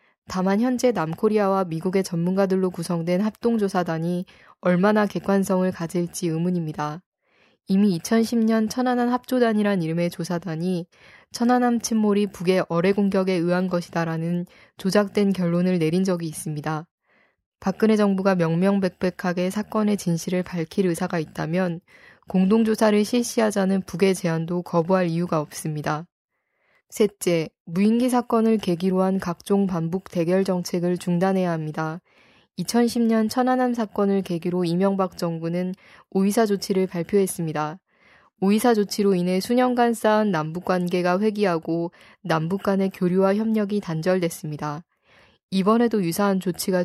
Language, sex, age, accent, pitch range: Korean, female, 20-39, native, 175-210 Hz